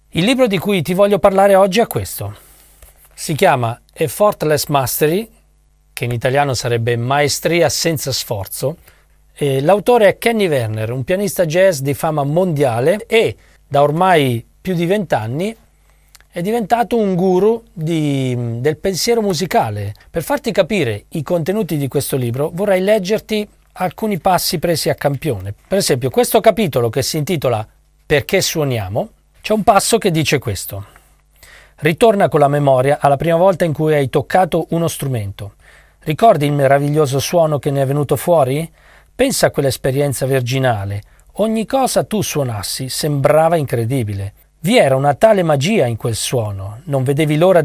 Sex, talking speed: male, 145 wpm